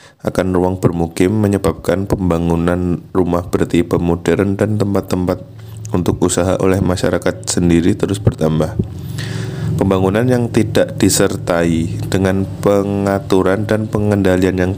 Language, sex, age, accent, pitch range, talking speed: Indonesian, male, 20-39, native, 85-105 Hz, 105 wpm